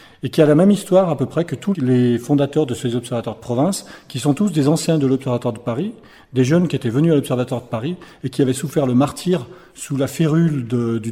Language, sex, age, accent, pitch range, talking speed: French, male, 40-59, French, 120-150 Hz, 255 wpm